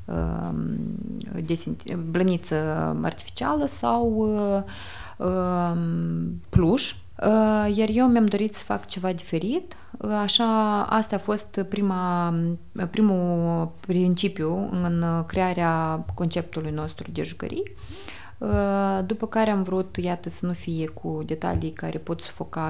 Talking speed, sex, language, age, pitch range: 105 wpm, female, Romanian, 20-39, 165-205 Hz